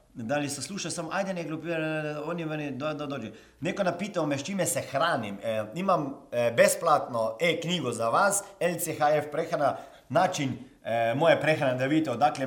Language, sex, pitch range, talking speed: Croatian, male, 150-235 Hz, 160 wpm